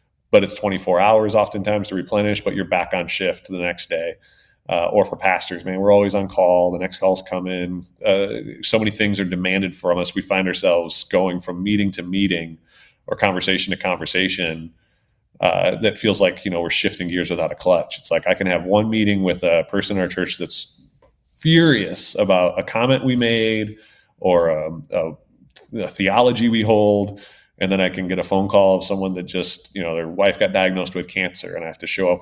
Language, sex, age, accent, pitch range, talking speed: English, male, 30-49, American, 95-130 Hz, 210 wpm